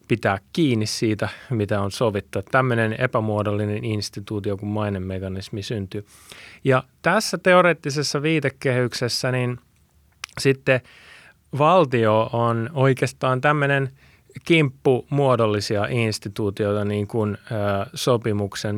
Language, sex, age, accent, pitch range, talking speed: Finnish, male, 30-49, native, 105-145 Hz, 100 wpm